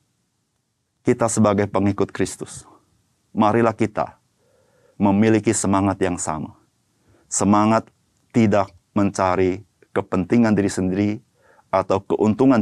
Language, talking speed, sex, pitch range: Indonesian, 85 wpm, male, 90-110 Hz